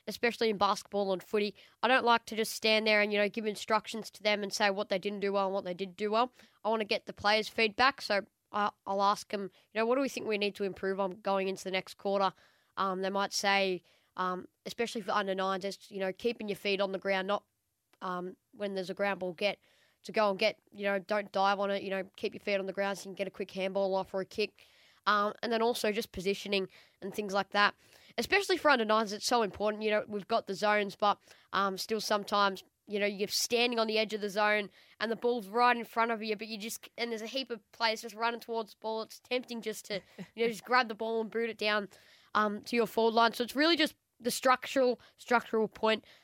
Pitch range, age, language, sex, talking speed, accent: 195-225 Hz, 20-39, English, female, 260 wpm, Australian